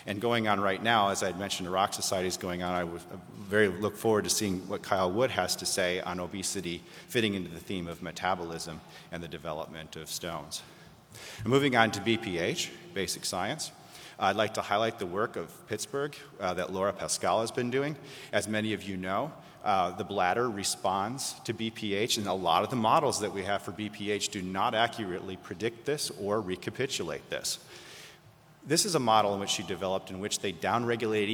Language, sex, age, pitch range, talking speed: English, male, 30-49, 95-115 Hz, 195 wpm